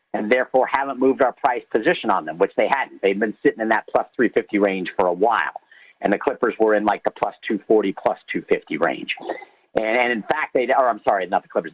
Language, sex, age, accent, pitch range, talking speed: English, male, 50-69, American, 120-150 Hz, 230 wpm